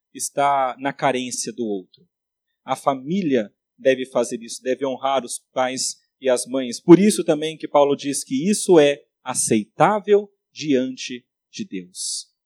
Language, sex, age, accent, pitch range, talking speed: Portuguese, male, 30-49, Brazilian, 140-205 Hz, 145 wpm